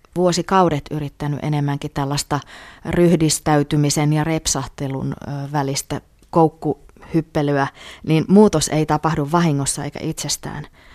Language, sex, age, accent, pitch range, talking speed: Finnish, female, 30-49, native, 140-170 Hz, 90 wpm